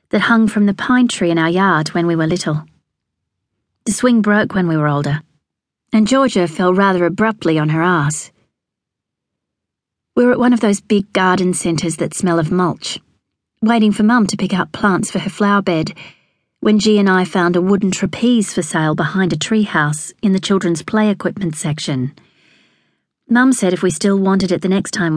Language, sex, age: English, female, 40-59